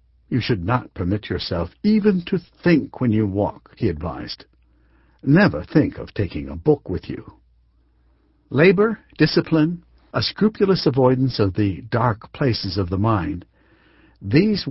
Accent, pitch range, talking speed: American, 90-145 Hz, 140 wpm